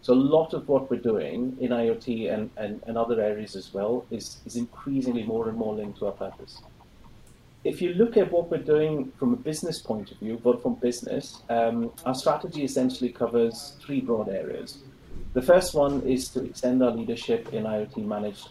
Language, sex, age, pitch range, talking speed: English, male, 30-49, 110-140 Hz, 200 wpm